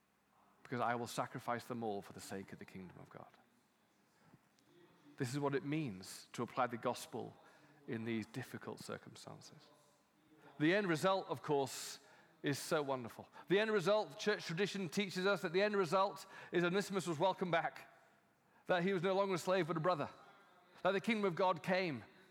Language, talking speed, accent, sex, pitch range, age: English, 185 wpm, British, male, 125-180 Hz, 40-59